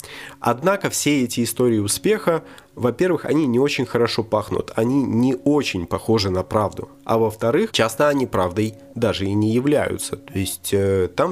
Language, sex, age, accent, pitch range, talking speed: Russian, male, 20-39, native, 100-130 Hz, 160 wpm